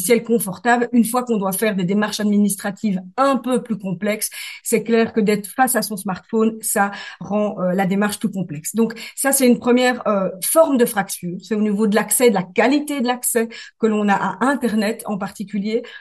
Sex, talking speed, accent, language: female, 200 wpm, French, French